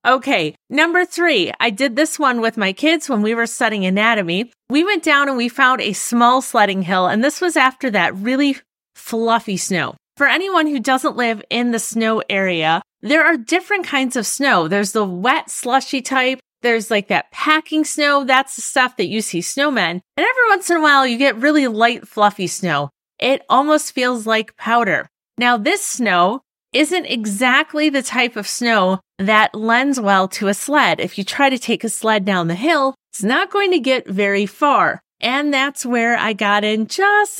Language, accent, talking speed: English, American, 195 wpm